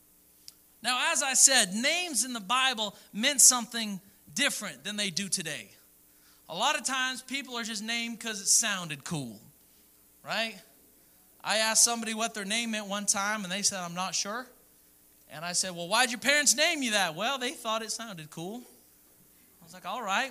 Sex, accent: male, American